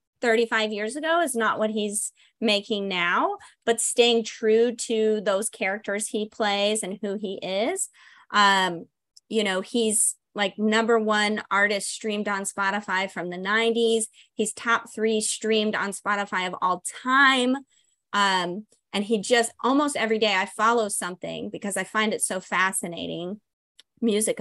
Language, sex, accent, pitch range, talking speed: English, female, American, 195-230 Hz, 150 wpm